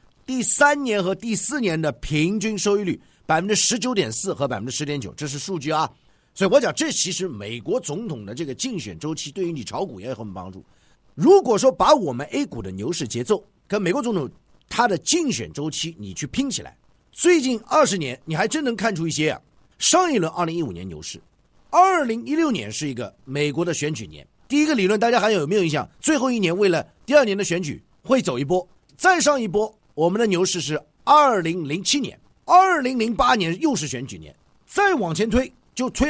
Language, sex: Chinese, male